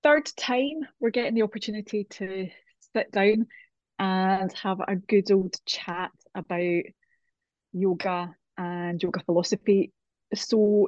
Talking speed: 115 wpm